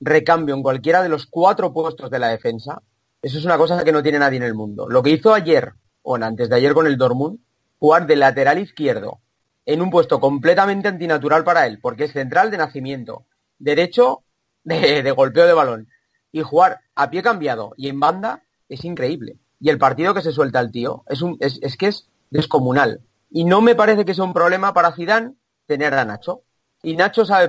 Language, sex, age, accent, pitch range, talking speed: Spanish, male, 40-59, Spanish, 130-175 Hz, 205 wpm